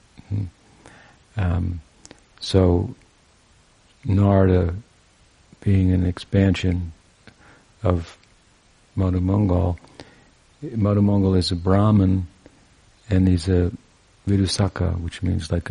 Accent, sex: American, male